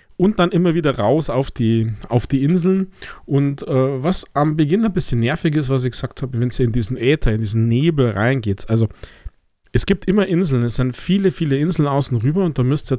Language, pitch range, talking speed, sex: German, 115-145 Hz, 225 wpm, male